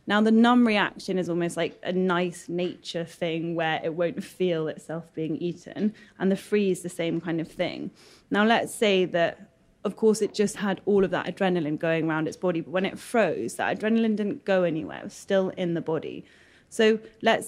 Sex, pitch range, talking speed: female, 175-215 Hz, 205 wpm